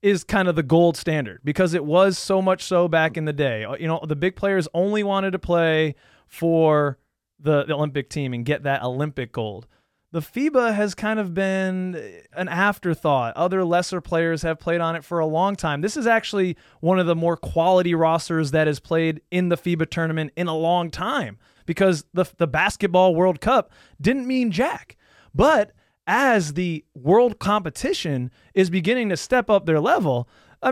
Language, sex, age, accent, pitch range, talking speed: English, male, 20-39, American, 160-200 Hz, 190 wpm